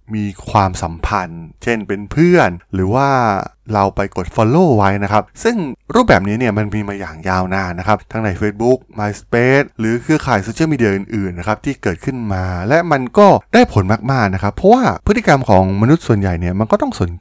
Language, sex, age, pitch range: Thai, male, 20-39, 95-125 Hz